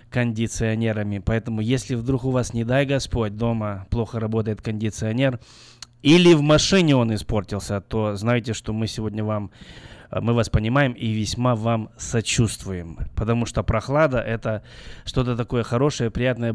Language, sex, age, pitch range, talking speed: Russian, male, 20-39, 110-125 Hz, 140 wpm